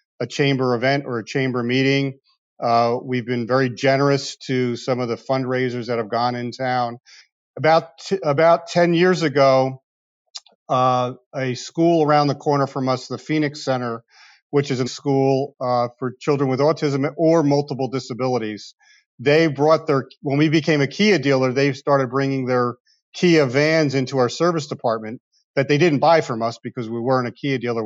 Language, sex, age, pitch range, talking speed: English, male, 40-59, 130-150 Hz, 175 wpm